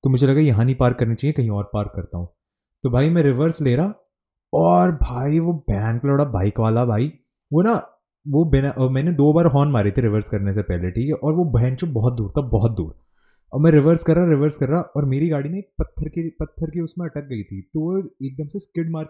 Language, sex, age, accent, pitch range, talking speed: Hindi, male, 20-39, native, 115-160 Hz, 240 wpm